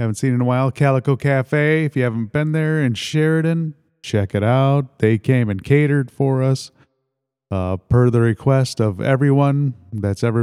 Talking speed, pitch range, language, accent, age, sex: 180 wpm, 110-150 Hz, English, American, 30-49, male